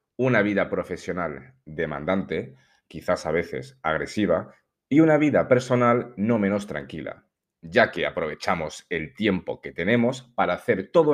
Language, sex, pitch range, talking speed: Spanish, male, 95-130 Hz, 135 wpm